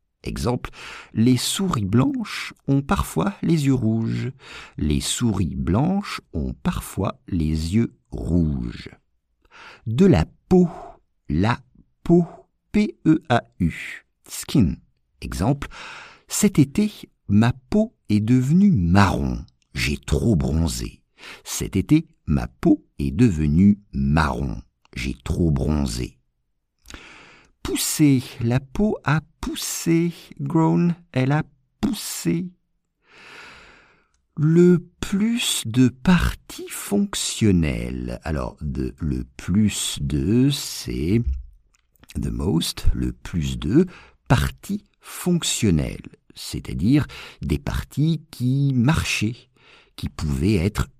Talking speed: 95 wpm